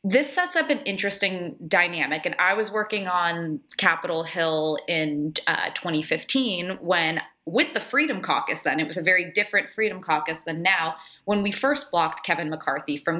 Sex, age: female, 20-39